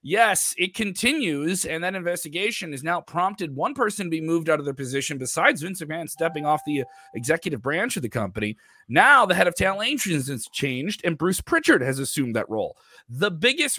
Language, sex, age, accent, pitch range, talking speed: English, male, 30-49, American, 130-200 Hz, 195 wpm